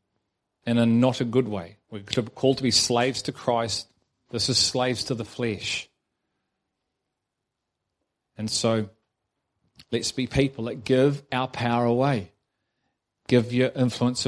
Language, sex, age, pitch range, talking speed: English, male, 40-59, 115-140 Hz, 135 wpm